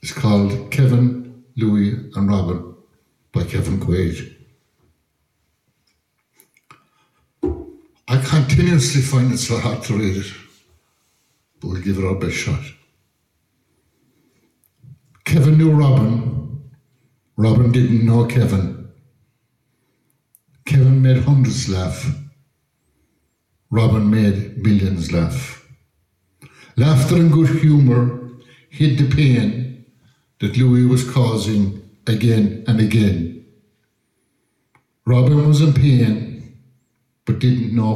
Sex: male